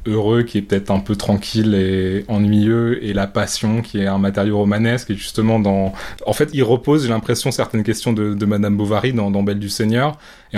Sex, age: male, 20-39